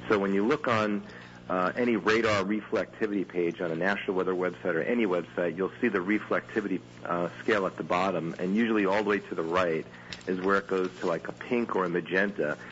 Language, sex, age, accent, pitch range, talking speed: English, male, 50-69, American, 80-100 Hz, 215 wpm